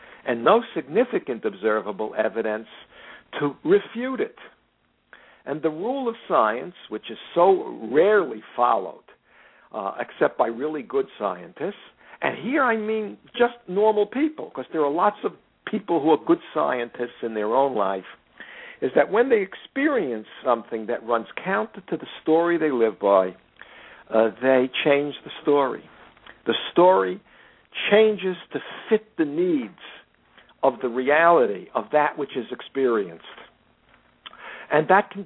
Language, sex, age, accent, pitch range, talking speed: English, male, 60-79, American, 130-210 Hz, 140 wpm